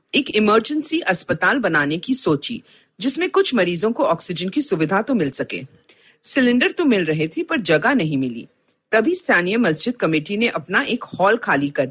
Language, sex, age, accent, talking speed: Hindi, female, 50-69, native, 175 wpm